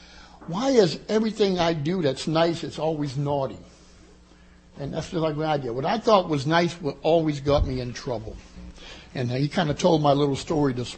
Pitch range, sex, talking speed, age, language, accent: 135-185 Hz, male, 190 wpm, 60-79, English, American